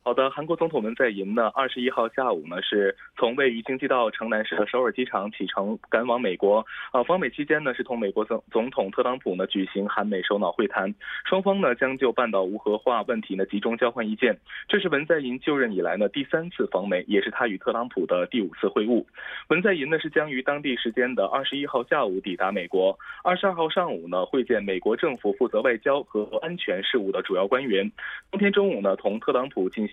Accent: Chinese